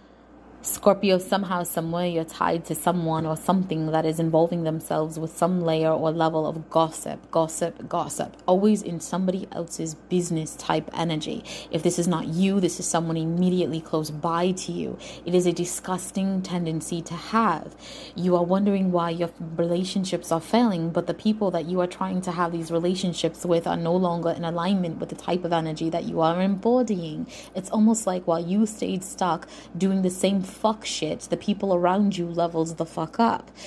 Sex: female